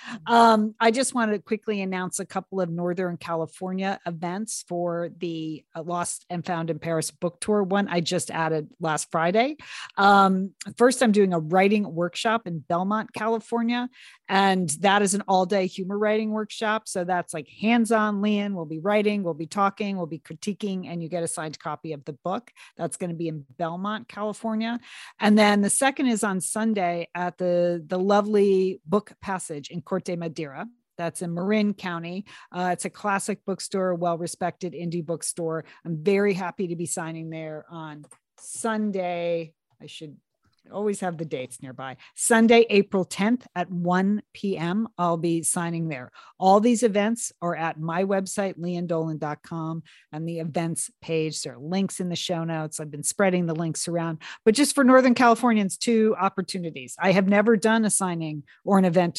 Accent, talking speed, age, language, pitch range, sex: American, 175 wpm, 40-59, English, 165-205 Hz, female